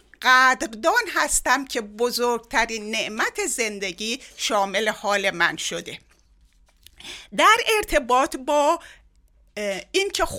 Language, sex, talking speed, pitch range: Persian, female, 85 wpm, 205-290 Hz